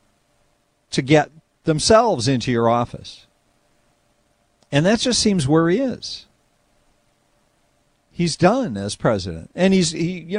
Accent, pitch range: American, 115-180 Hz